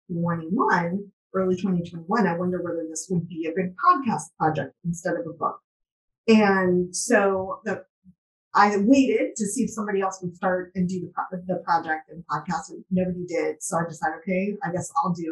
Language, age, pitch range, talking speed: English, 30-49, 180-230 Hz, 175 wpm